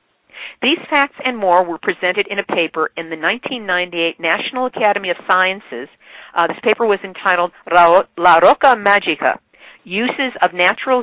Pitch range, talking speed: 175-230 Hz, 145 wpm